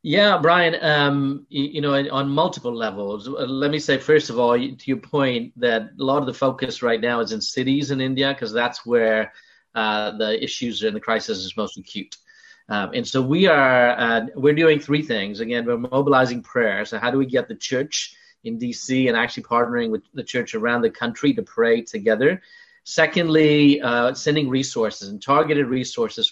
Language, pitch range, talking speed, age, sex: English, 125-165 Hz, 195 wpm, 30-49, male